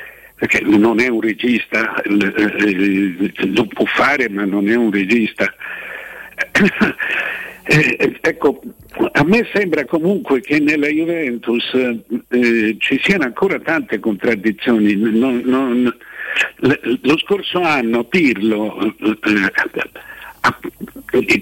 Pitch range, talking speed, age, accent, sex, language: 110-150 Hz, 100 wpm, 60-79, native, male, Italian